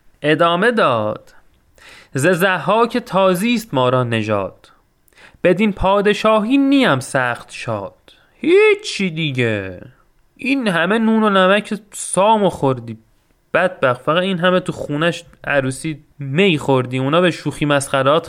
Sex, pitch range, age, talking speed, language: male, 140-200 Hz, 30-49, 115 wpm, Persian